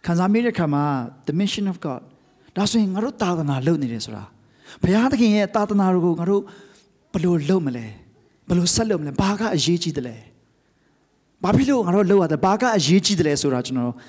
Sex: male